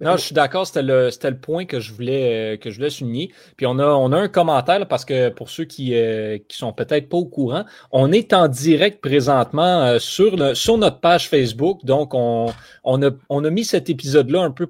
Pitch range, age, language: 120-160 Hz, 30-49, French